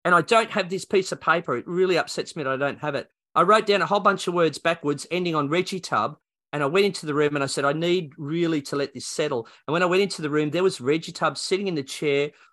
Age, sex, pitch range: 40-59, male, 135-185 Hz